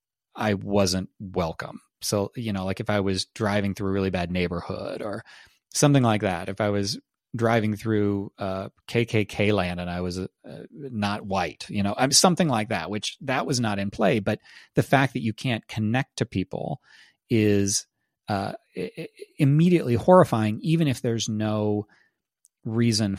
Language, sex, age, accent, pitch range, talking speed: English, male, 30-49, American, 100-125 Hz, 165 wpm